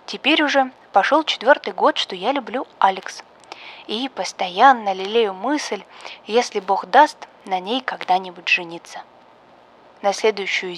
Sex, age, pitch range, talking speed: female, 20-39, 185-240 Hz, 120 wpm